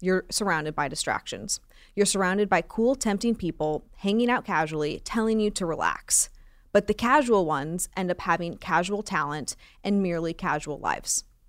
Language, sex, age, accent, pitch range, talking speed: English, female, 20-39, American, 165-210 Hz, 155 wpm